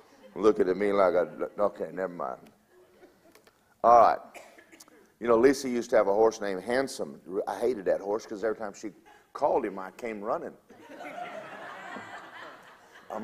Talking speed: 155 wpm